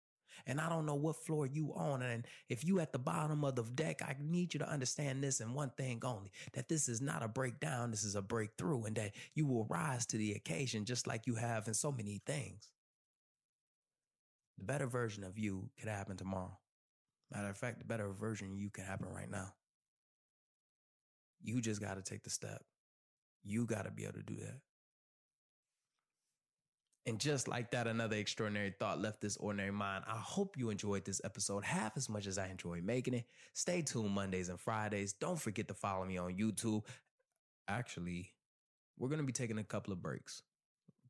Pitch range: 100-130 Hz